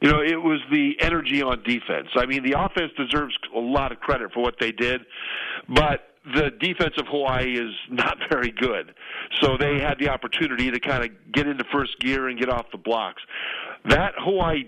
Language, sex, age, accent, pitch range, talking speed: English, male, 50-69, American, 130-170 Hz, 200 wpm